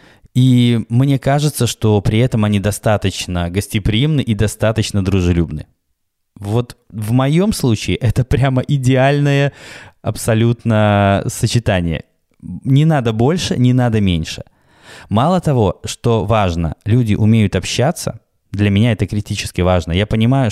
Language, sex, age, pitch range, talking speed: Russian, male, 20-39, 100-130 Hz, 120 wpm